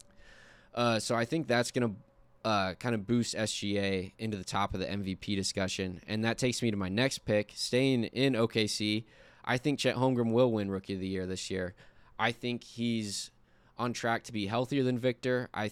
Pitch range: 100-115 Hz